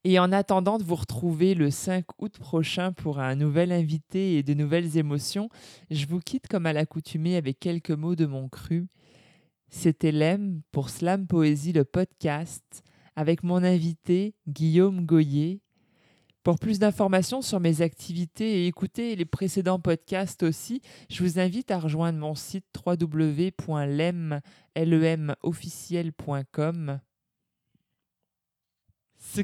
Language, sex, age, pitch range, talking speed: French, male, 20-39, 160-190 Hz, 130 wpm